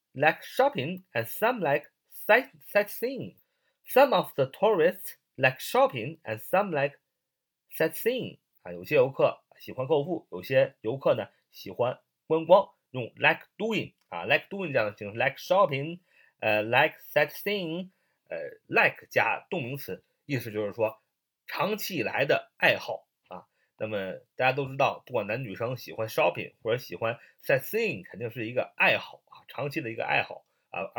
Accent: native